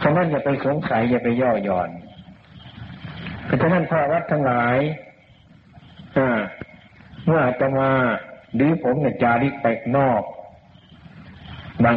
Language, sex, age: Thai, male, 60-79